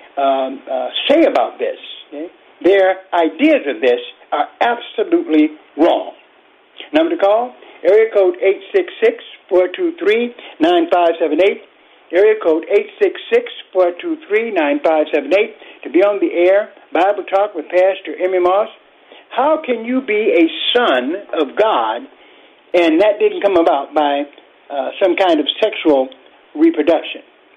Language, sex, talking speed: English, male, 115 wpm